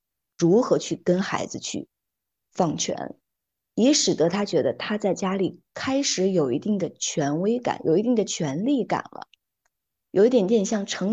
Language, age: Chinese, 20-39